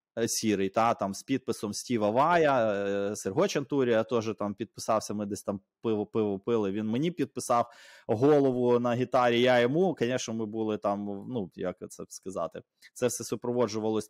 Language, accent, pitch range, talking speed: Ukrainian, native, 110-140 Hz, 155 wpm